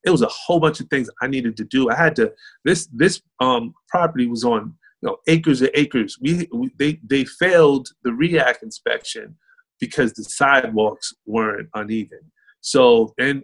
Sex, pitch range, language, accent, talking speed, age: male, 120-175 Hz, English, American, 180 wpm, 30-49